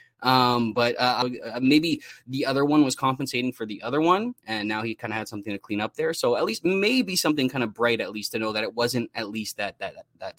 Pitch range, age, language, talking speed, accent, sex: 110-145 Hz, 20-39, English, 255 wpm, American, male